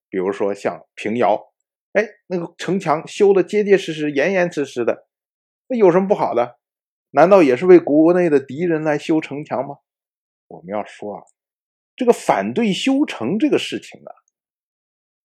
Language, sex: Chinese, male